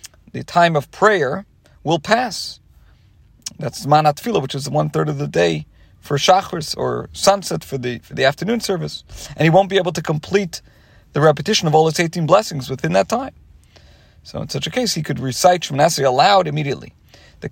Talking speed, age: 185 wpm, 40-59